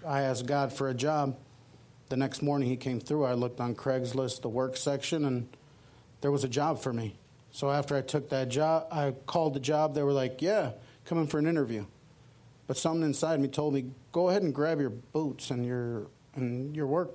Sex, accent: male, American